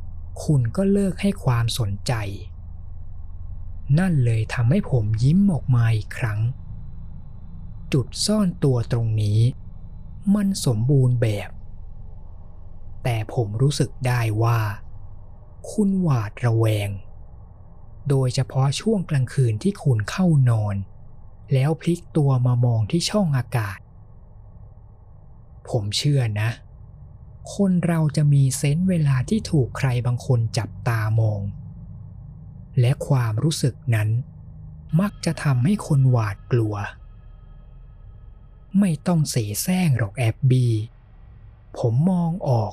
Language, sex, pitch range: Thai, male, 105-140 Hz